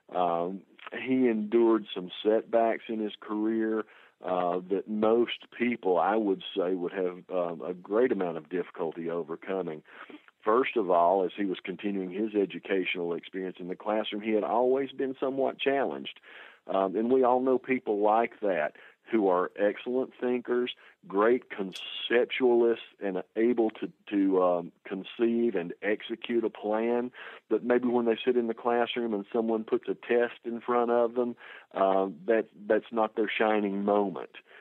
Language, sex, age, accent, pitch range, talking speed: English, male, 50-69, American, 100-120 Hz, 160 wpm